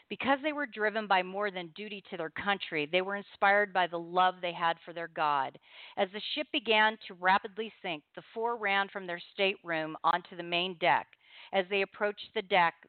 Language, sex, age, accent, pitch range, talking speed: English, female, 40-59, American, 175-205 Hz, 205 wpm